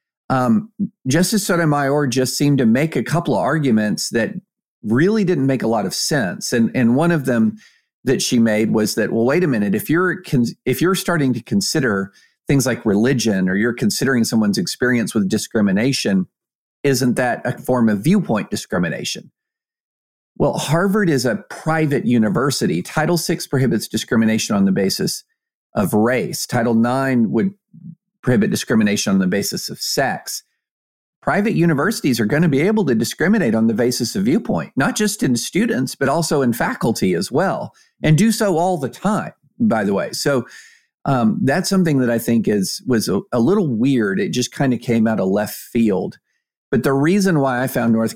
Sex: male